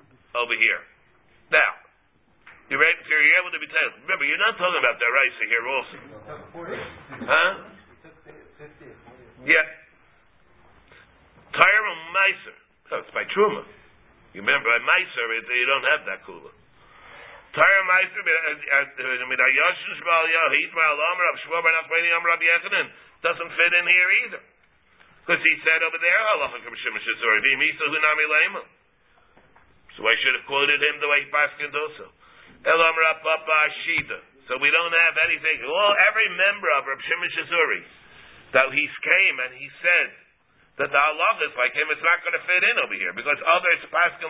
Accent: American